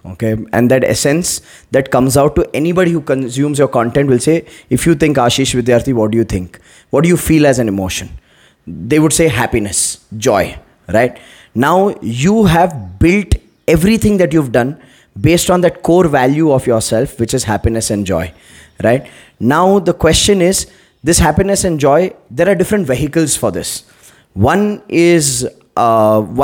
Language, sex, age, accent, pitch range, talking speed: Hindi, male, 20-39, native, 120-175 Hz, 170 wpm